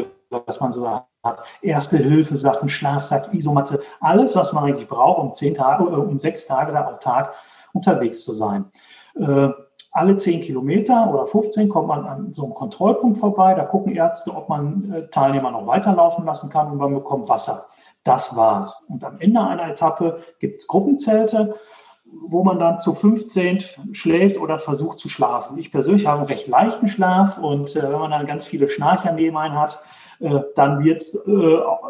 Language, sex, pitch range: German, male, 145-205 Hz